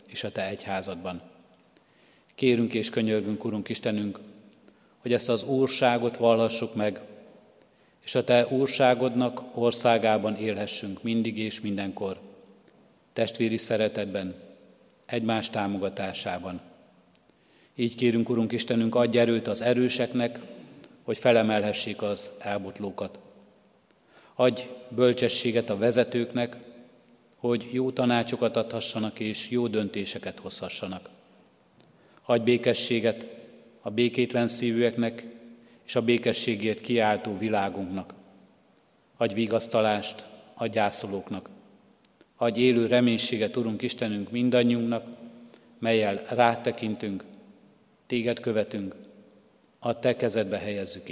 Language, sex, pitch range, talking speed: Hungarian, male, 105-120 Hz, 95 wpm